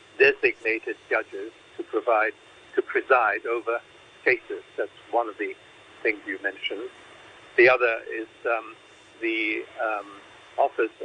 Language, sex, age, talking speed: English, male, 60-79, 120 wpm